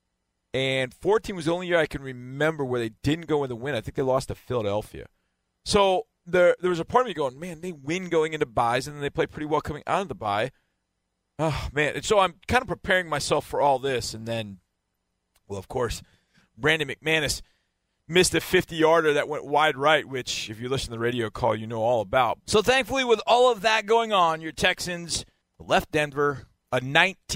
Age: 40-59